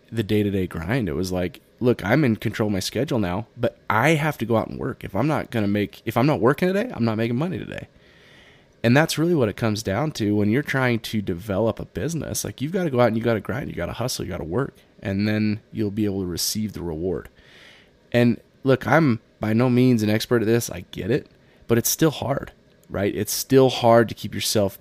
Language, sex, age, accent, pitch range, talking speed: English, male, 20-39, American, 95-120 Hz, 255 wpm